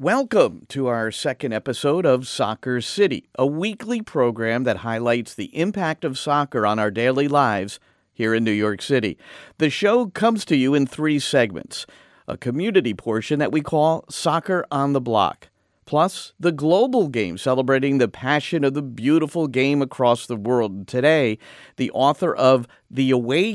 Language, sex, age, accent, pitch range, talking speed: English, male, 50-69, American, 120-165 Hz, 165 wpm